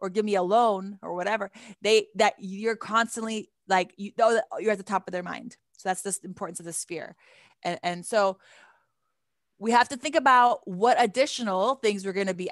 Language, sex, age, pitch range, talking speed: English, female, 20-39, 180-210 Hz, 200 wpm